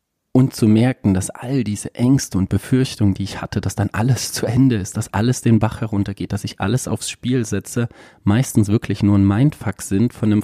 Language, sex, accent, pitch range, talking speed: German, male, German, 100-115 Hz, 215 wpm